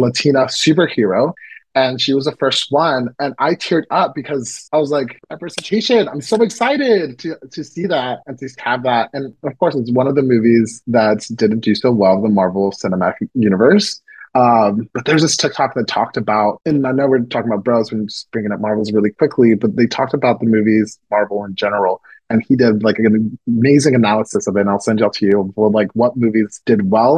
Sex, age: male, 30-49